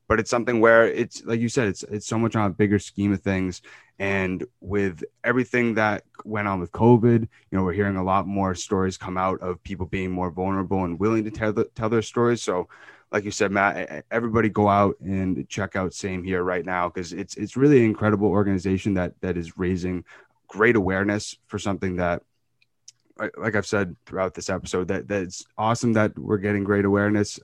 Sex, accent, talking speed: male, American, 210 wpm